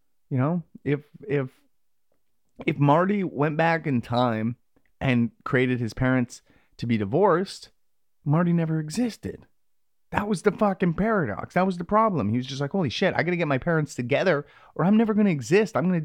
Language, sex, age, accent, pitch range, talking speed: English, male, 30-49, American, 125-185 Hz, 190 wpm